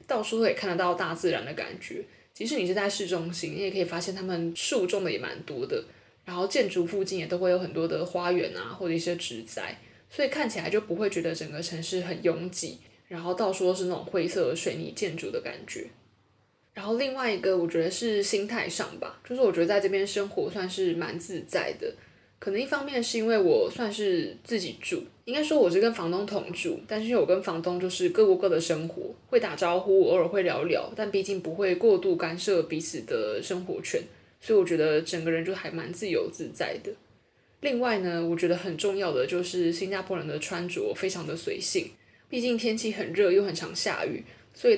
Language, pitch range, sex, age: Chinese, 175-240 Hz, female, 20-39